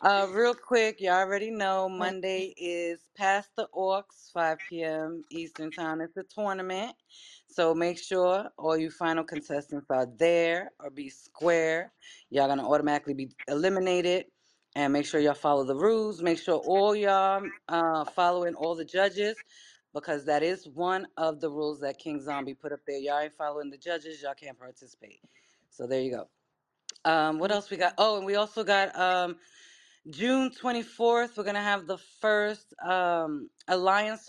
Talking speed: 175 wpm